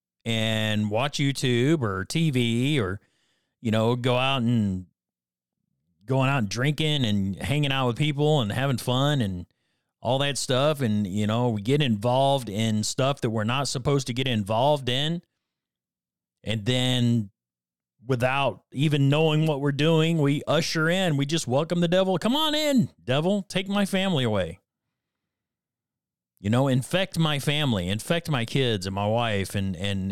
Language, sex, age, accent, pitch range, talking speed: English, male, 40-59, American, 110-150 Hz, 160 wpm